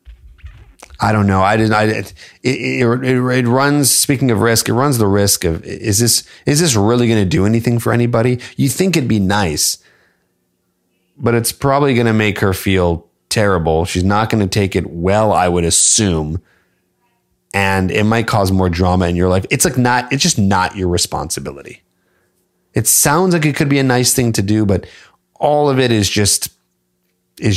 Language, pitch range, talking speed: English, 85-115 Hz, 195 wpm